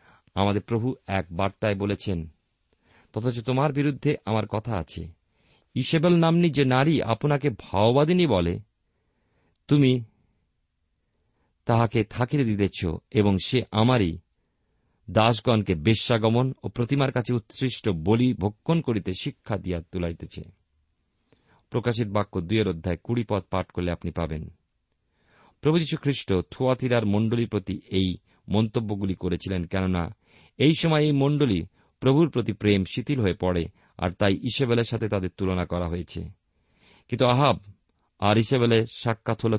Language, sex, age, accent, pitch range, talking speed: Bengali, male, 50-69, native, 90-125 Hz, 120 wpm